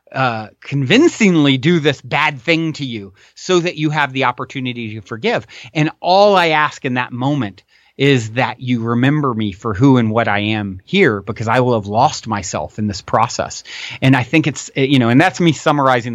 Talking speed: 200 wpm